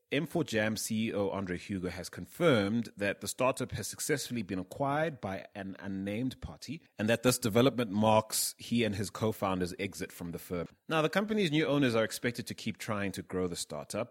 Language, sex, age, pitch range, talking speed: English, male, 30-49, 90-120 Hz, 185 wpm